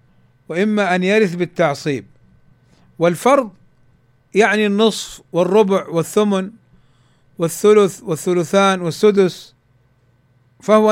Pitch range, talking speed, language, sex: 130-210 Hz, 70 wpm, Arabic, male